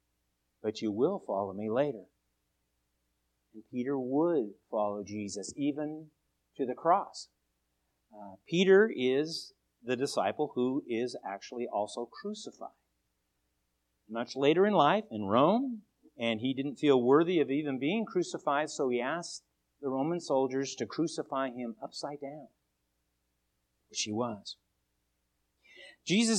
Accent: American